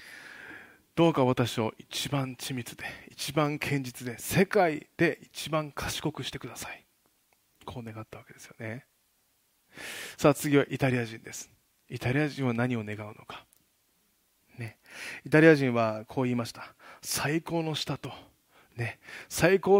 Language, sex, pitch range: Japanese, male, 115-150 Hz